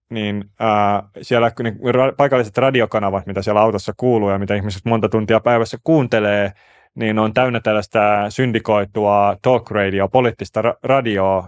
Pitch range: 100-120 Hz